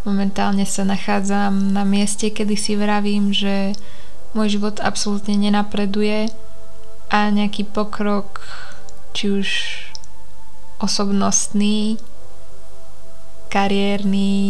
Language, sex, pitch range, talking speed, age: Slovak, female, 195-210 Hz, 85 wpm, 20-39